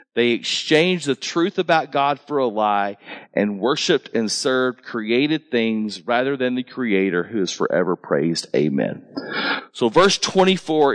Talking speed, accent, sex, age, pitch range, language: 150 wpm, American, male, 40-59, 115-155 Hz, English